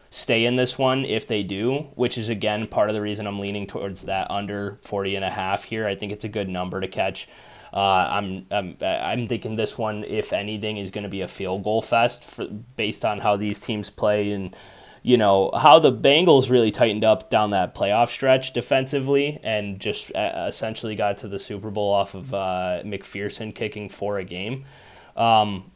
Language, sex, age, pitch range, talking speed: English, male, 20-39, 100-130 Hz, 200 wpm